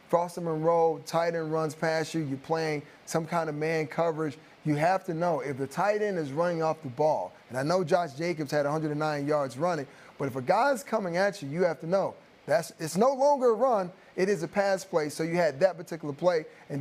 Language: English